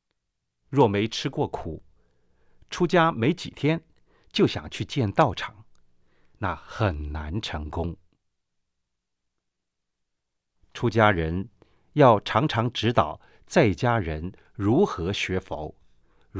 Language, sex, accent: Chinese, male, native